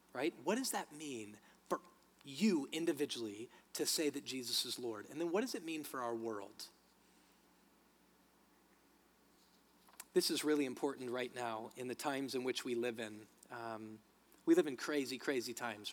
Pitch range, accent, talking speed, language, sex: 125-155 Hz, American, 165 wpm, English, male